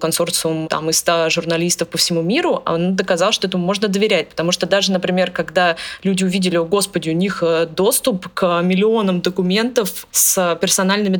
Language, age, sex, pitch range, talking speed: Russian, 20-39, female, 170-195 Hz, 160 wpm